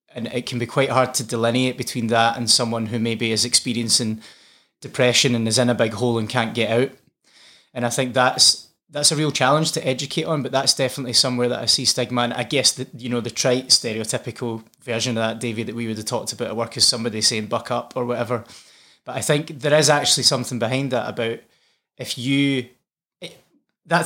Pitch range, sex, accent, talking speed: 115-135 Hz, male, British, 220 wpm